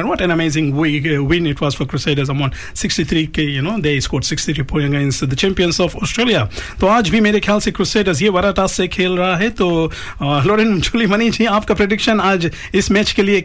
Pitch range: 155-205 Hz